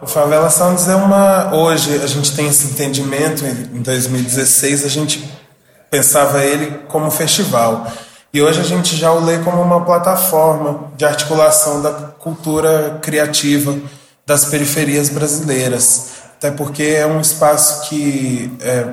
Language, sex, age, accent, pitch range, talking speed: Portuguese, male, 20-39, Brazilian, 135-155 Hz, 140 wpm